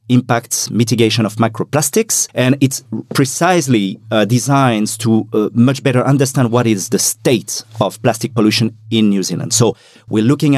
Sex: male